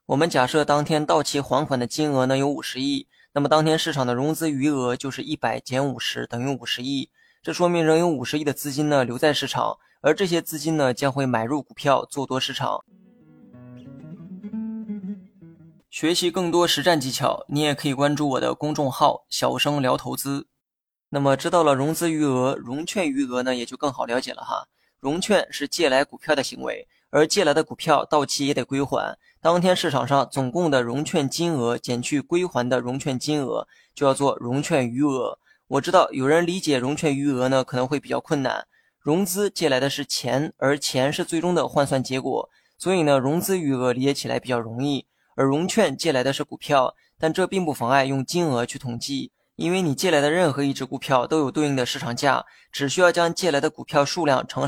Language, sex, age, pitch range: Chinese, male, 20-39, 135-165 Hz